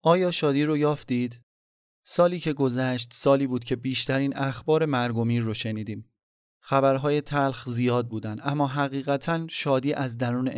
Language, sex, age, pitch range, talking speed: Persian, male, 30-49, 115-140 Hz, 135 wpm